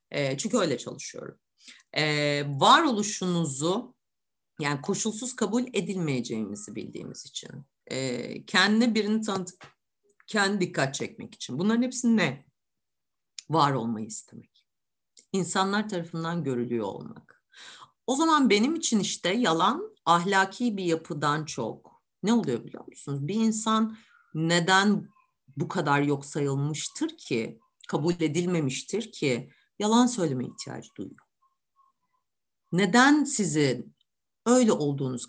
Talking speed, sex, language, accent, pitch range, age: 100 wpm, female, Turkish, native, 145-215 Hz, 50-69